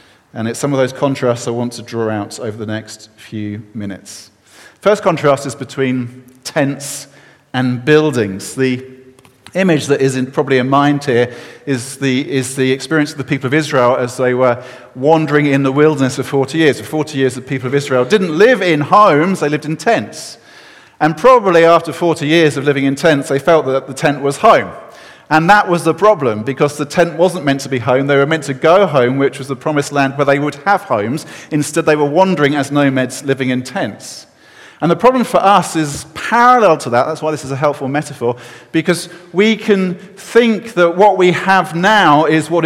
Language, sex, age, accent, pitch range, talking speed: English, male, 40-59, British, 130-170 Hz, 210 wpm